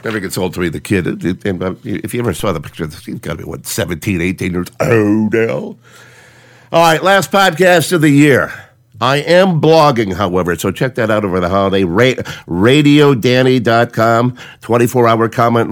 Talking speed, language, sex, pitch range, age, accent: 170 wpm, English, male, 105-150 Hz, 50-69, American